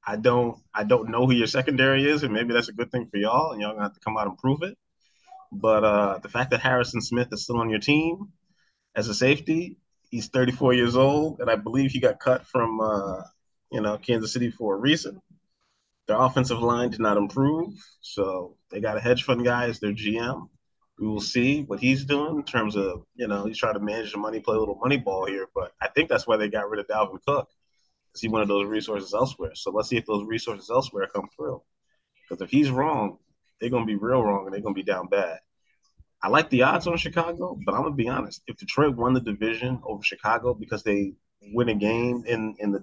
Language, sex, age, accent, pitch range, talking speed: English, male, 20-39, American, 105-135 Hz, 240 wpm